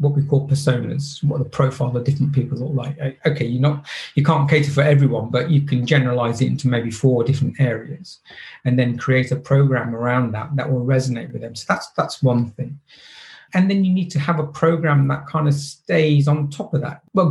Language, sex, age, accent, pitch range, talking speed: English, male, 40-59, British, 130-155 Hz, 220 wpm